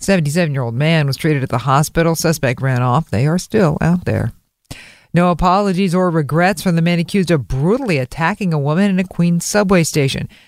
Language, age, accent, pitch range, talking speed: English, 50-69, American, 135-165 Hz, 190 wpm